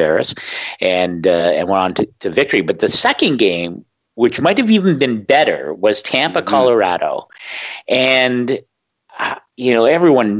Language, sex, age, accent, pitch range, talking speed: English, male, 50-69, American, 95-145 Hz, 150 wpm